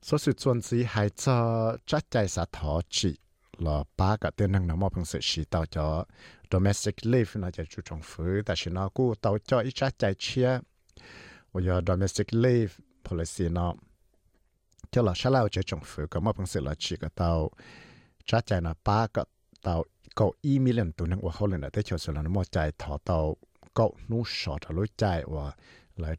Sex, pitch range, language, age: male, 80-110 Hz, English, 60-79